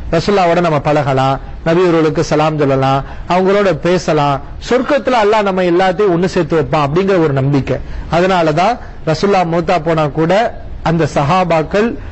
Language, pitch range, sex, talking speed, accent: English, 170-220 Hz, male, 115 wpm, Indian